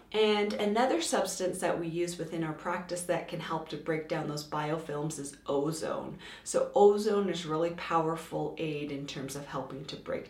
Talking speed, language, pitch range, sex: 180 wpm, English, 155-195 Hz, female